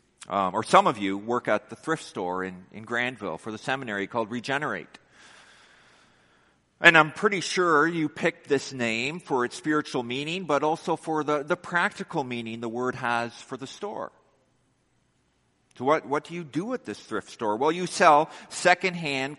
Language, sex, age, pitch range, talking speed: English, male, 50-69, 125-170 Hz, 175 wpm